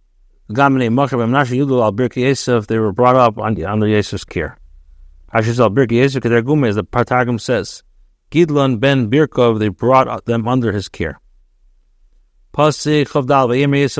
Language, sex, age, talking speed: English, male, 50-69, 75 wpm